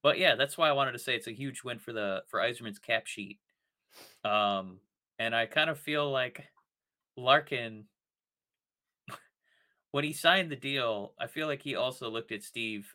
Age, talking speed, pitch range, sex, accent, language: 30-49, 180 wpm, 110-140 Hz, male, American, English